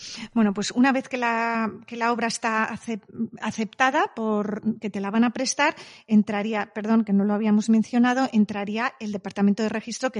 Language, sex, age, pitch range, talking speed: Spanish, female, 30-49, 205-245 Hz, 180 wpm